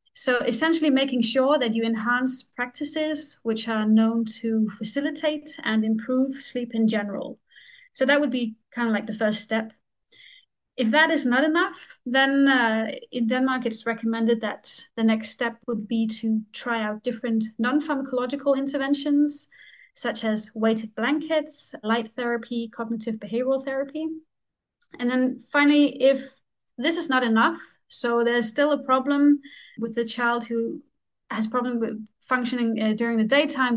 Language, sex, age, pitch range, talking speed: English, female, 30-49, 225-275 Hz, 150 wpm